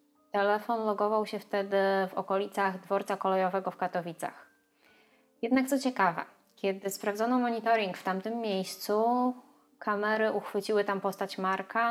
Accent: native